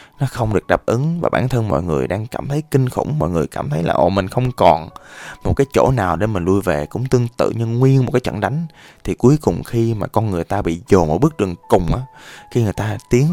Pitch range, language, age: 90-130 Hz, Vietnamese, 20-39